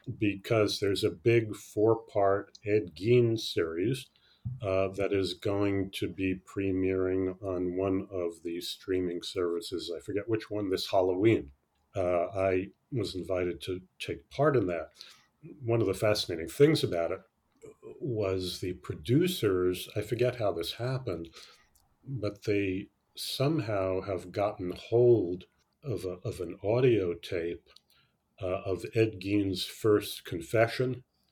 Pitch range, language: 90-115 Hz, English